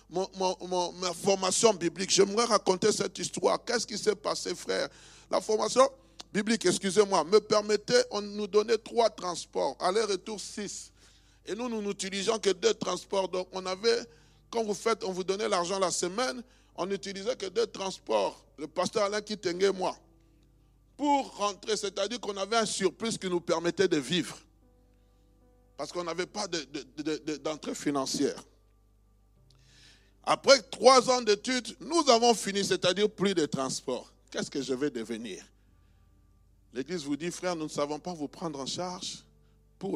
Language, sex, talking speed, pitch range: French, male, 165 wpm, 130-210 Hz